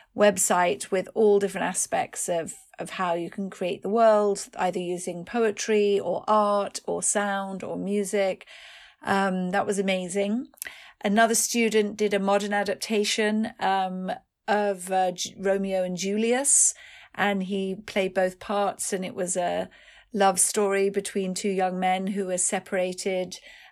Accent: British